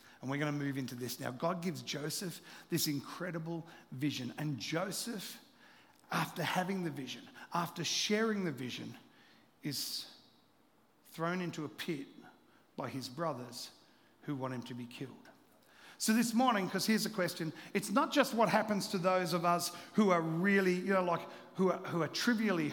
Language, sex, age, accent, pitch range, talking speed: English, male, 50-69, Australian, 165-215 Hz, 170 wpm